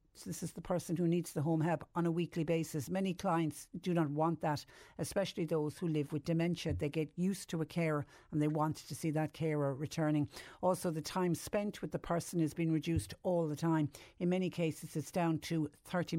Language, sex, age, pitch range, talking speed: English, female, 60-79, 150-170 Hz, 220 wpm